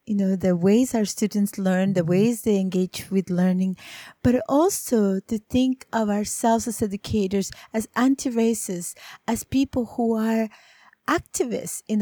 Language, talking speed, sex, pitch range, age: English, 145 wpm, female, 180-225 Hz, 30-49